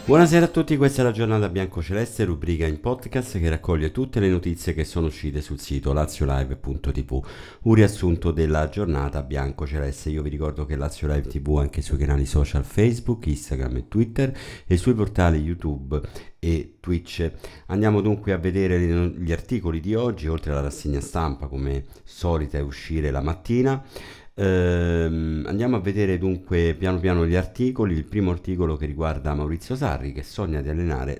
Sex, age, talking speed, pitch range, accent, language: male, 50-69, 165 wpm, 75-100 Hz, native, Italian